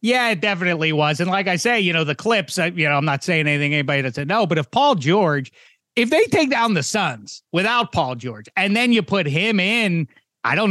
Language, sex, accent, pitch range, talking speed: English, male, American, 125-160 Hz, 240 wpm